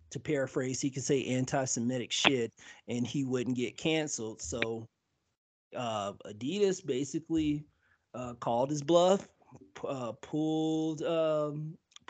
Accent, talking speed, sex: American, 120 wpm, male